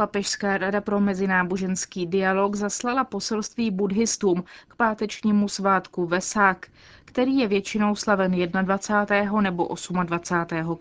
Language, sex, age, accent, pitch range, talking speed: Czech, female, 20-39, native, 185-215 Hz, 105 wpm